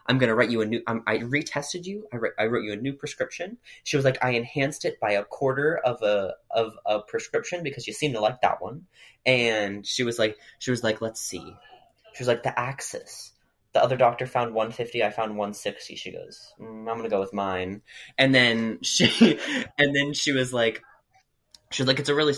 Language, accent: English, American